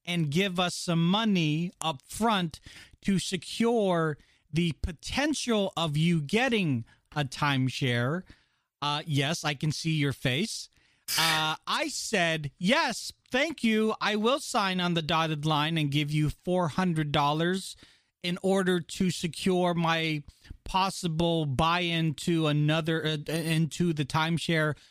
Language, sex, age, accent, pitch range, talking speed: English, male, 40-59, American, 135-175 Hz, 125 wpm